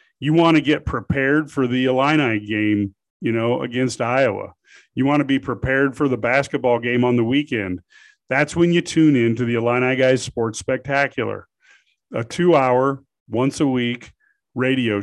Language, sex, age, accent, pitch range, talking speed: English, male, 40-59, American, 120-140 Hz, 160 wpm